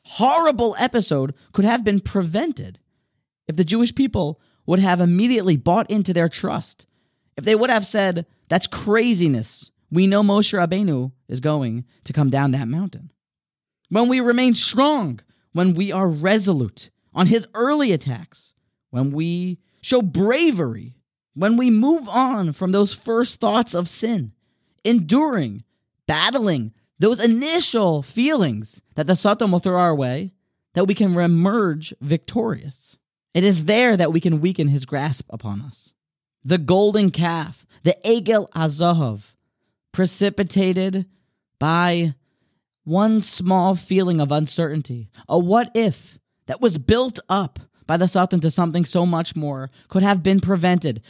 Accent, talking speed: American, 140 wpm